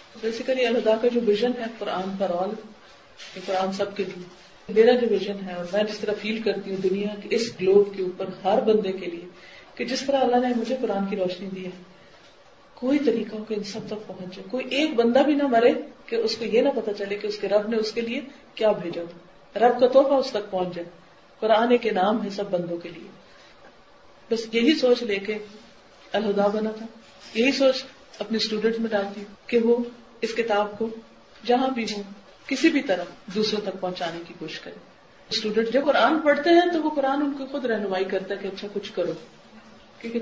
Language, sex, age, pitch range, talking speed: Urdu, female, 40-59, 190-245 Hz, 165 wpm